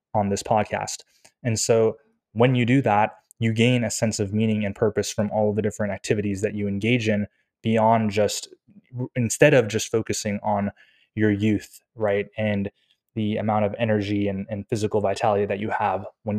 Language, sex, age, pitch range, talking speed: English, male, 20-39, 105-115 Hz, 185 wpm